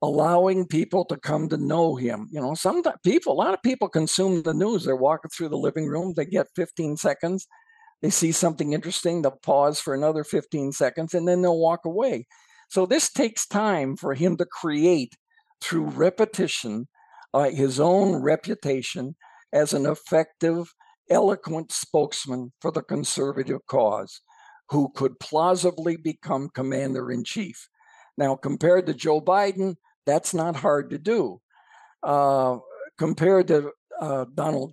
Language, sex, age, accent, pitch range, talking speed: English, male, 60-79, American, 140-190 Hz, 150 wpm